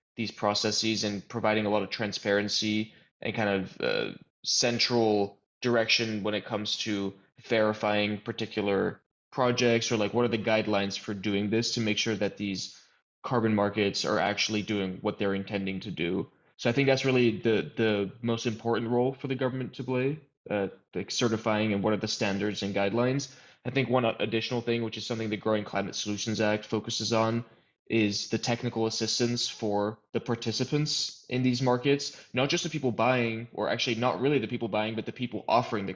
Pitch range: 105-120 Hz